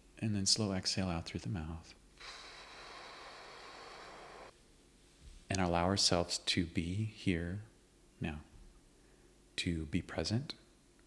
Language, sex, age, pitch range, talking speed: English, male, 30-49, 85-110 Hz, 100 wpm